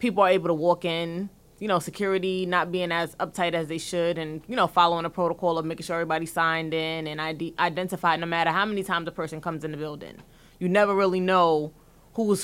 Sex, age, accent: female, 20-39, American